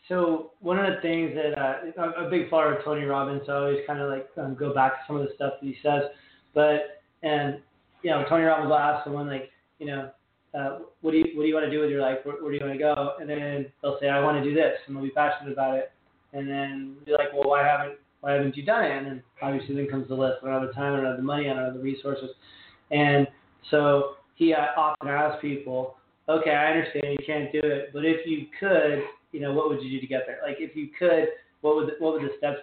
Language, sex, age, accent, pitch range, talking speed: English, male, 20-39, American, 140-155 Hz, 280 wpm